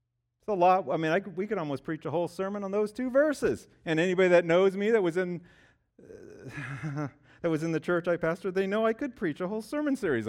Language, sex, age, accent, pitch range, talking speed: English, male, 50-69, American, 125-195 Hz, 215 wpm